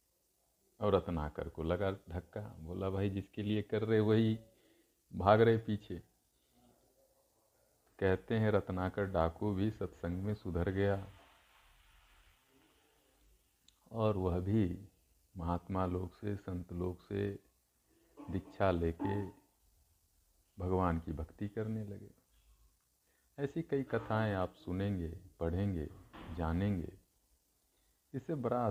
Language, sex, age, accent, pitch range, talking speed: Hindi, male, 50-69, native, 90-110 Hz, 100 wpm